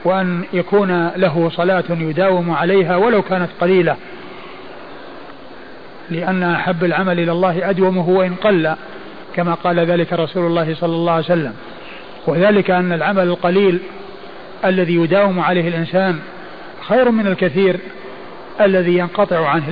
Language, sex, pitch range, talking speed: Arabic, male, 175-195 Hz, 120 wpm